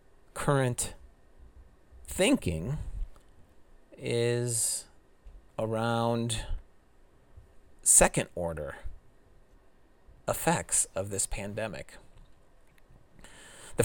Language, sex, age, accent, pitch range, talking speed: English, male, 30-49, American, 90-115 Hz, 50 wpm